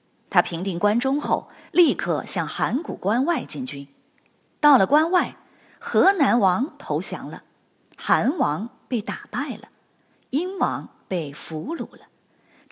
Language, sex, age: Chinese, female, 30-49